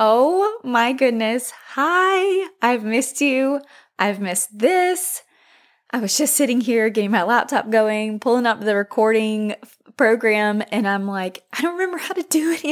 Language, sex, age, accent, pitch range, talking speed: English, female, 20-39, American, 200-270 Hz, 160 wpm